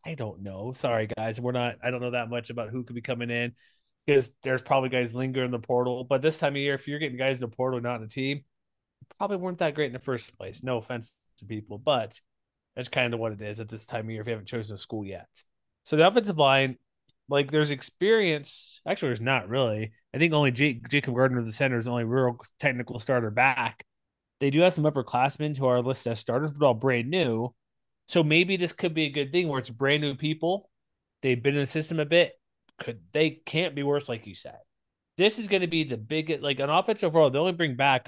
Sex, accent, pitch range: male, American, 120-145 Hz